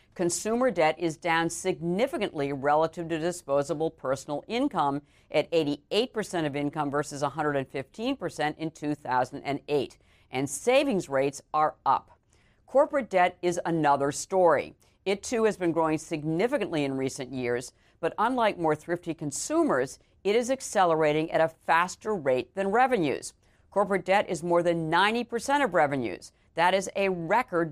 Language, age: English, 50-69